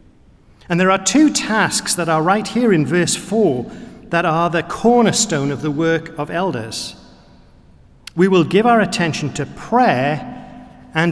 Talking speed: 155 wpm